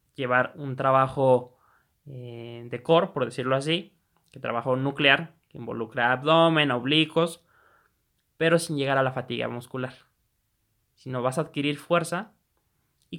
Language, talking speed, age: Spanish, 135 wpm, 20-39